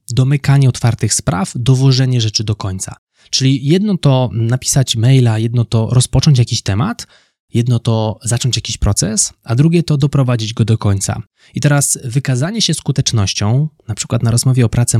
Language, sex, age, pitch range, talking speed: Polish, male, 20-39, 110-135 Hz, 160 wpm